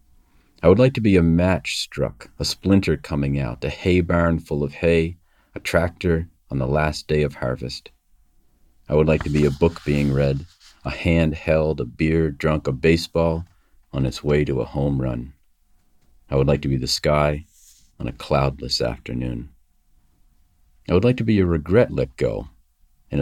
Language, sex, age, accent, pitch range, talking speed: English, male, 40-59, American, 70-85 Hz, 185 wpm